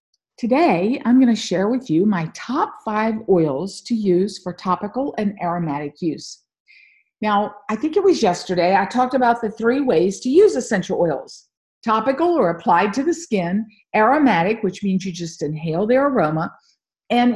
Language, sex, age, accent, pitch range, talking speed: English, female, 50-69, American, 190-275 Hz, 165 wpm